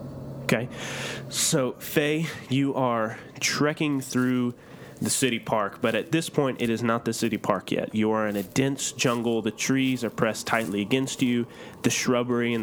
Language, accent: English, American